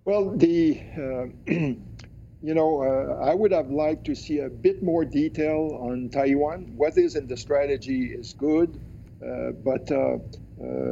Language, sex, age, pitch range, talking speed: English, male, 50-69, 120-150 Hz, 160 wpm